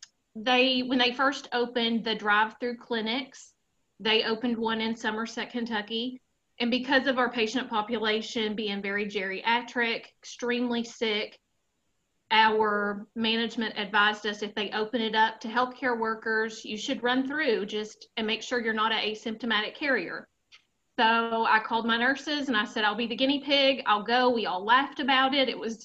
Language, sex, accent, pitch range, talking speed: English, female, American, 215-255 Hz, 165 wpm